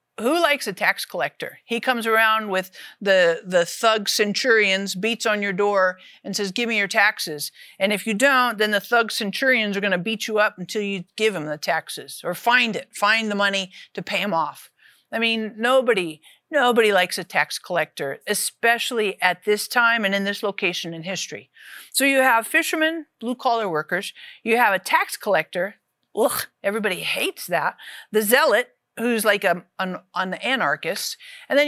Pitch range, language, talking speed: 200-255 Hz, English, 180 wpm